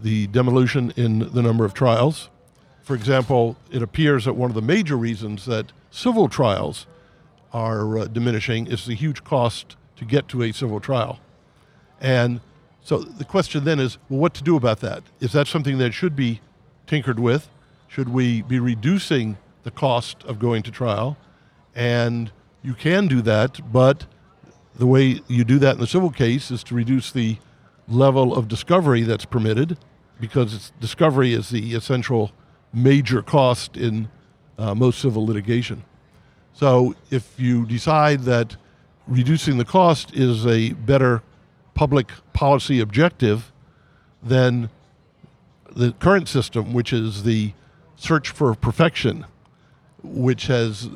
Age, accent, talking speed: 50-69, American, 150 wpm